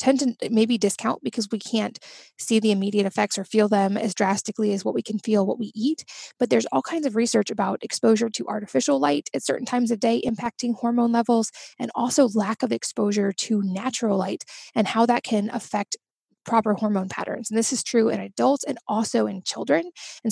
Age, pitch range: 20-39, 205-240 Hz